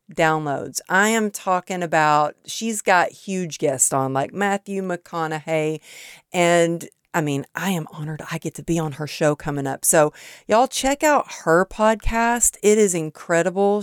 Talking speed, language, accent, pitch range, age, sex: 160 wpm, English, American, 160-210 Hz, 40-59, female